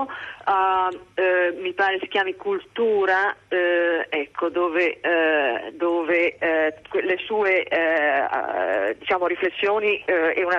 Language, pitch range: Italian, 180-275 Hz